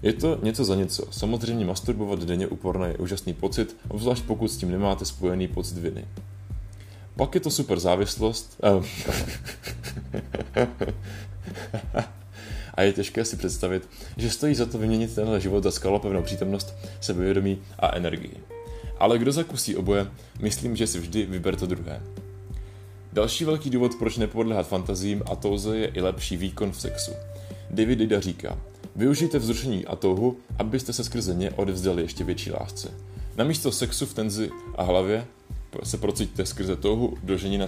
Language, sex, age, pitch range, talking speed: Czech, male, 20-39, 95-110 Hz, 155 wpm